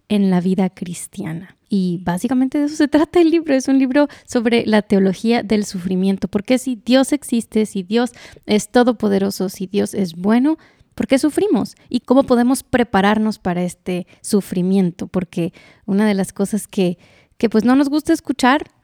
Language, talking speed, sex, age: Spanish, 170 wpm, female, 20-39